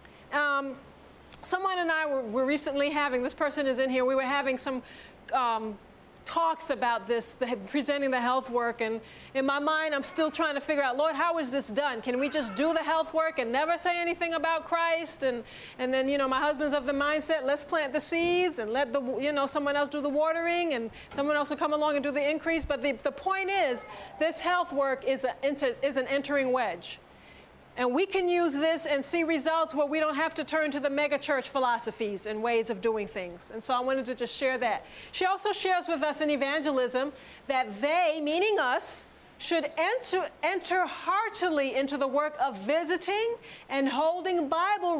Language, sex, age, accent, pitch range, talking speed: English, female, 40-59, American, 265-330 Hz, 210 wpm